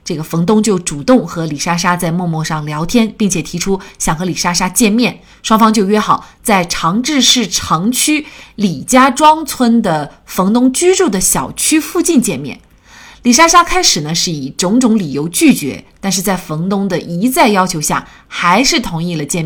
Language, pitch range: Chinese, 170-250 Hz